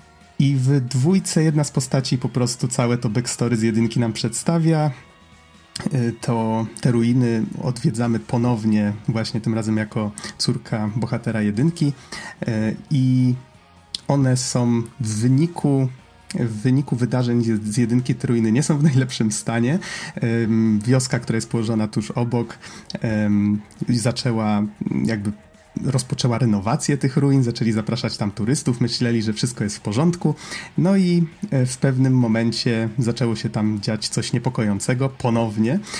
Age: 30-49